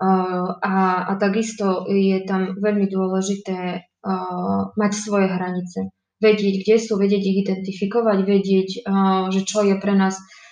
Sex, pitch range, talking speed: female, 180-200 Hz, 135 wpm